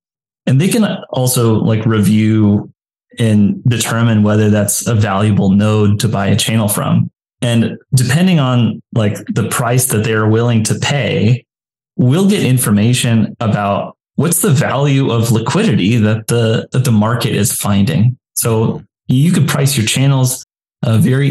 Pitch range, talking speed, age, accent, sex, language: 105-135 Hz, 150 wpm, 20-39, American, male, English